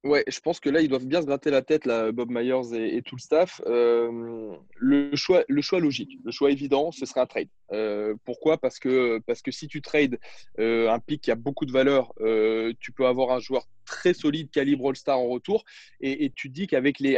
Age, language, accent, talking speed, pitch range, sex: 20-39, French, French, 240 wpm, 125-180 Hz, male